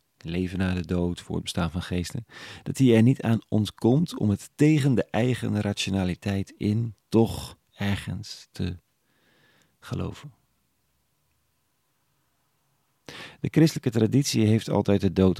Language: Dutch